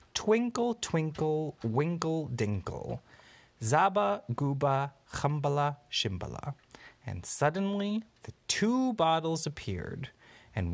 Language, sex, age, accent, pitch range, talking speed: English, male, 30-49, American, 110-165 Hz, 85 wpm